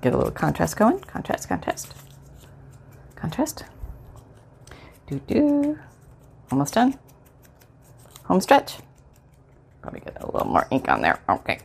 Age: 30-49